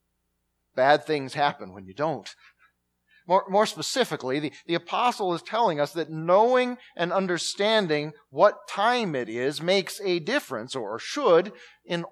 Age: 40-59